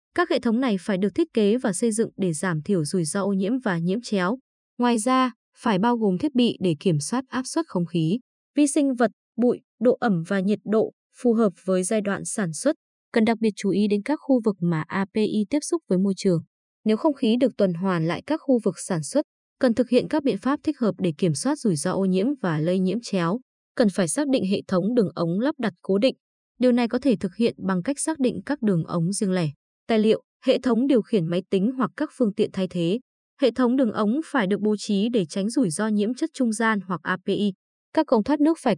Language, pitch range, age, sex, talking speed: Vietnamese, 185-255 Hz, 20-39, female, 250 wpm